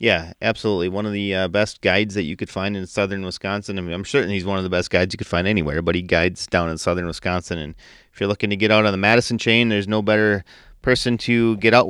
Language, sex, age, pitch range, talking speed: English, male, 30-49, 90-110 Hz, 270 wpm